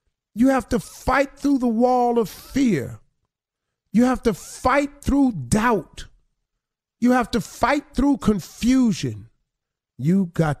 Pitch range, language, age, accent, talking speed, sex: 150-230 Hz, English, 40-59, American, 130 wpm, male